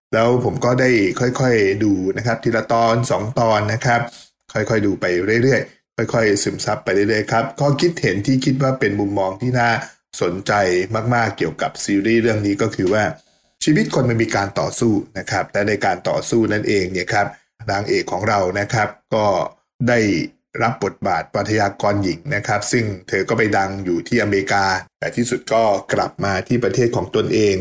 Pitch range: 100-120 Hz